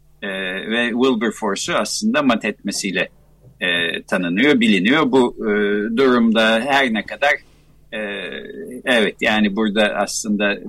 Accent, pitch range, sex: native, 120-200 Hz, male